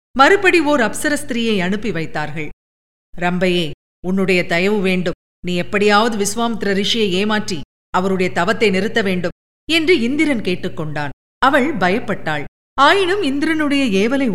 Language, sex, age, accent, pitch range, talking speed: Tamil, female, 50-69, native, 180-275 Hz, 110 wpm